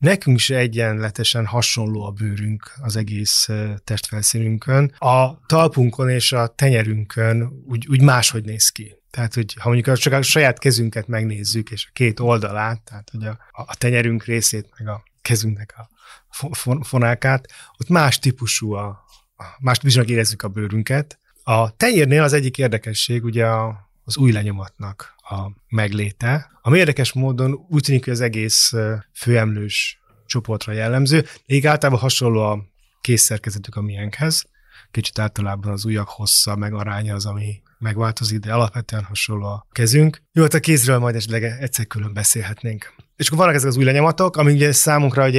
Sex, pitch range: male, 110-135 Hz